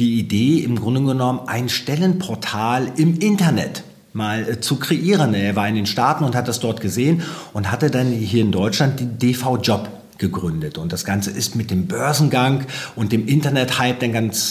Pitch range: 105-140 Hz